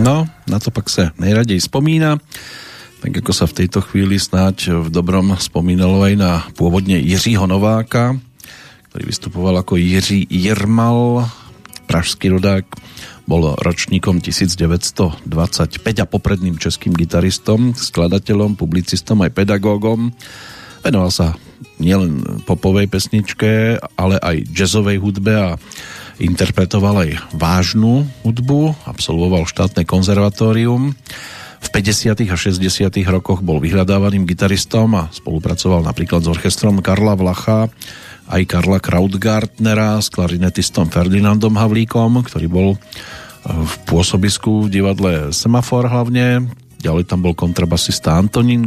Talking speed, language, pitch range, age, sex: 115 wpm, Slovak, 90-115 Hz, 40-59, male